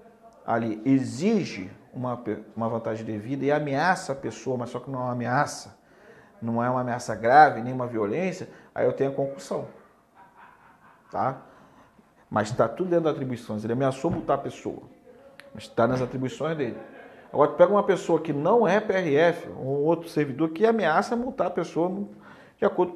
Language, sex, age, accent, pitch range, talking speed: Portuguese, male, 40-59, Brazilian, 125-170 Hz, 170 wpm